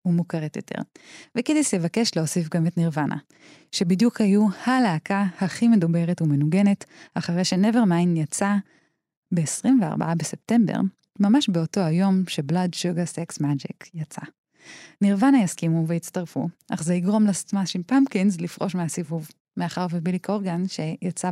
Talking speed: 120 wpm